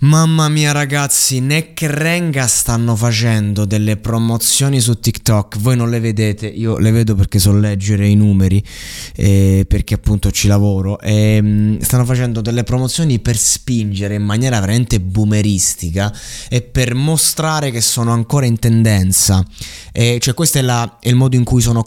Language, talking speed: Italian, 150 wpm